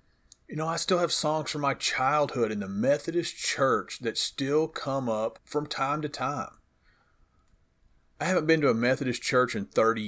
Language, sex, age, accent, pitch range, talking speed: English, male, 40-59, American, 110-150 Hz, 180 wpm